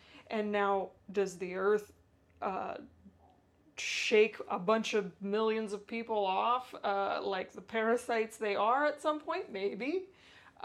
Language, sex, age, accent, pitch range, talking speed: English, female, 20-39, American, 210-250 Hz, 140 wpm